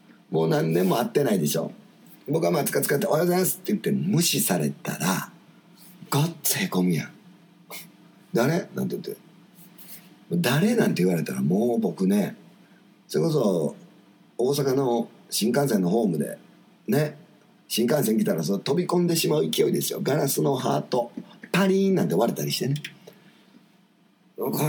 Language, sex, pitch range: Japanese, male, 115-195 Hz